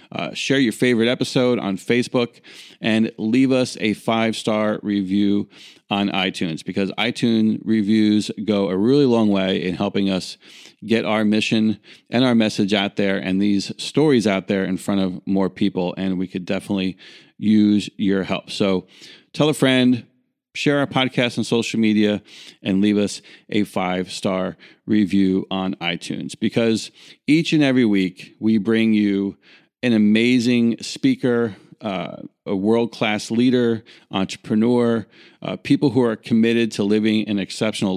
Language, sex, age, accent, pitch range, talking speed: English, male, 30-49, American, 100-120 Hz, 150 wpm